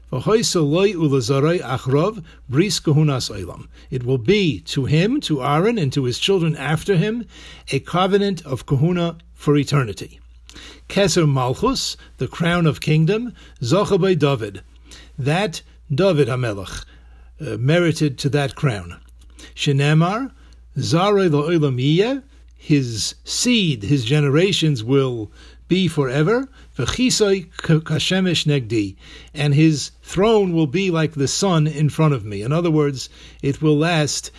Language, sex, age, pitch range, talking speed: English, male, 60-79, 130-175 Hz, 110 wpm